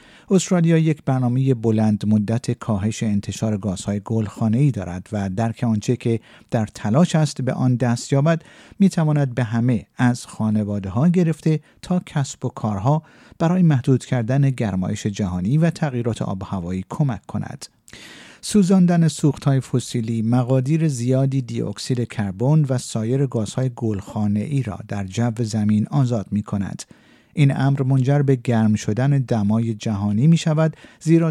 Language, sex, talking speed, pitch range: Persian, male, 140 wpm, 110-145 Hz